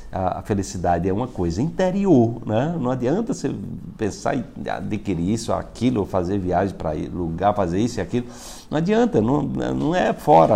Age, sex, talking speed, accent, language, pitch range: 50-69, male, 170 wpm, Brazilian, Portuguese, 90-140 Hz